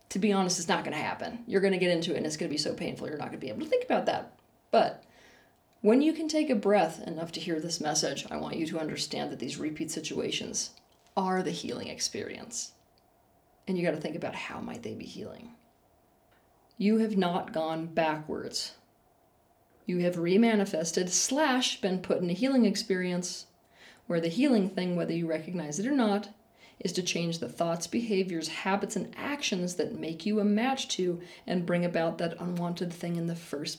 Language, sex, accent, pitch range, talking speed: English, female, American, 165-210 Hz, 205 wpm